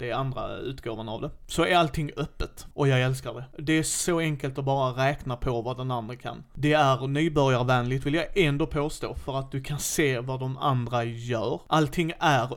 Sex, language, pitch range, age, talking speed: male, Swedish, 125-155 Hz, 30-49, 210 wpm